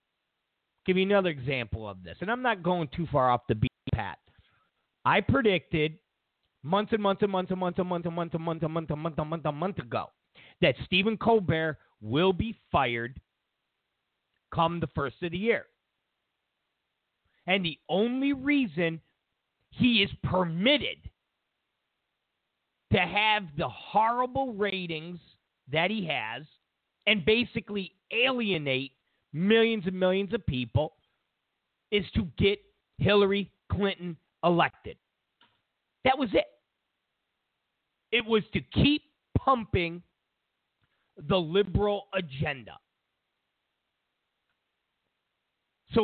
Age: 50-69